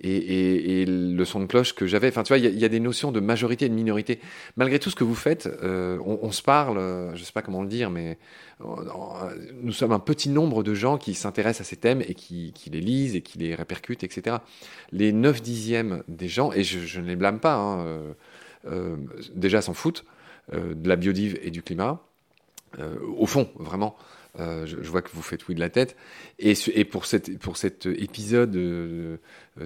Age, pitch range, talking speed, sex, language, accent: 30-49, 90-115 Hz, 235 wpm, male, French, French